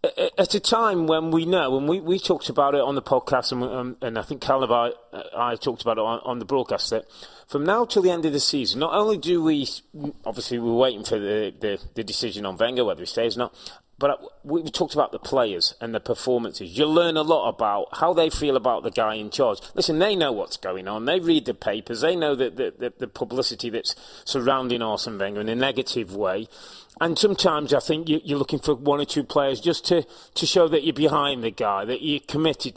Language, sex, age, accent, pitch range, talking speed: English, male, 30-49, British, 130-180 Hz, 235 wpm